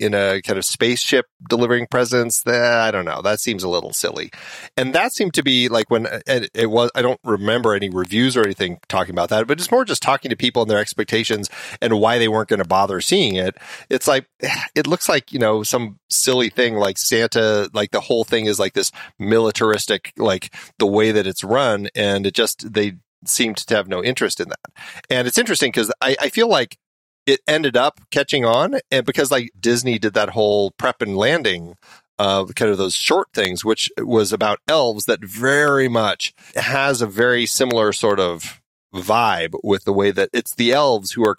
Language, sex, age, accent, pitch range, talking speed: English, male, 30-49, American, 105-120 Hz, 210 wpm